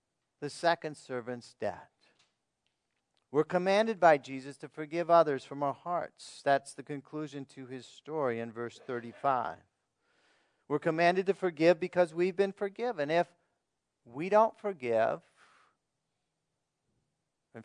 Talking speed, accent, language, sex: 120 wpm, American, English, male